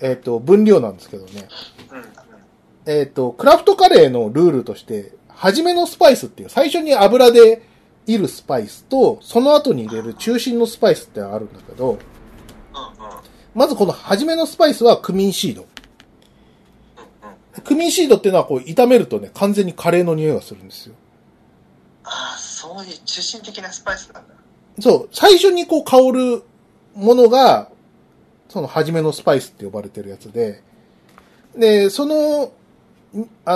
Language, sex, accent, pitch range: Japanese, male, native, 160-260 Hz